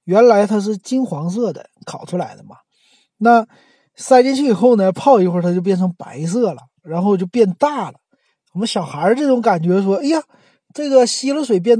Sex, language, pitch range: male, Chinese, 170-235 Hz